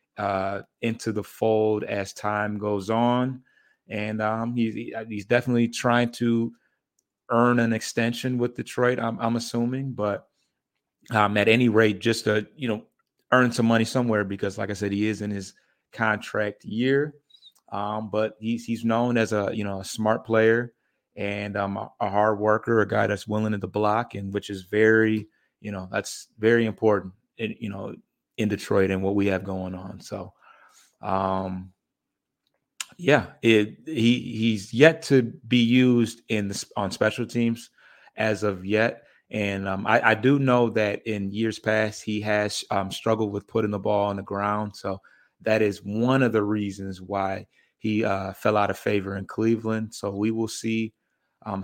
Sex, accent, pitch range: male, American, 100-115 Hz